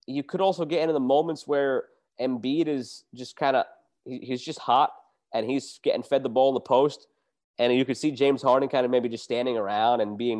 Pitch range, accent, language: 110-135 Hz, American, English